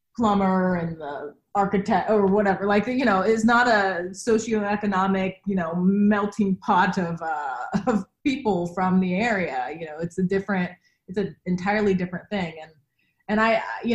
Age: 20-39